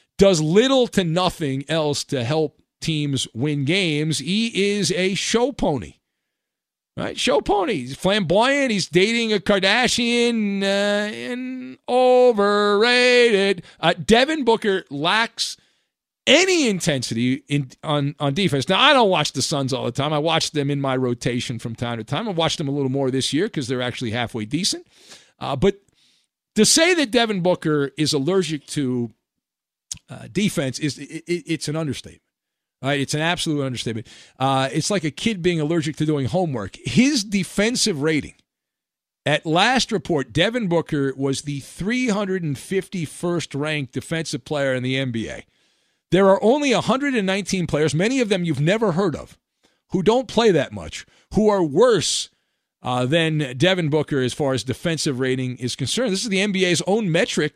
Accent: American